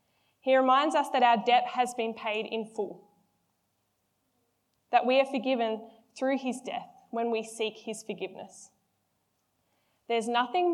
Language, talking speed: English, 140 wpm